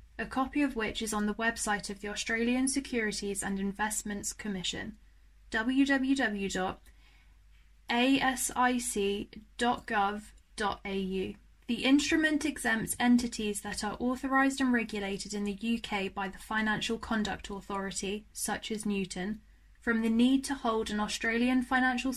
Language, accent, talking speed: English, British, 120 wpm